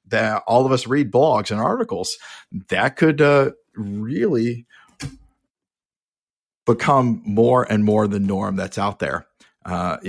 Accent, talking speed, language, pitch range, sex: American, 135 wpm, English, 95-110 Hz, male